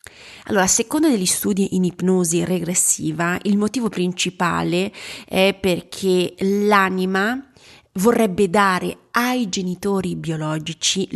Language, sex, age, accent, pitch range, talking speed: Italian, female, 30-49, native, 175-210 Hz, 95 wpm